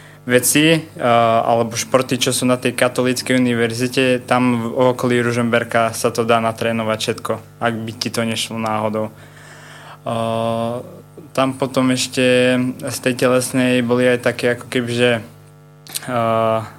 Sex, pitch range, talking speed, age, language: male, 120-130 Hz, 140 wpm, 20-39, Slovak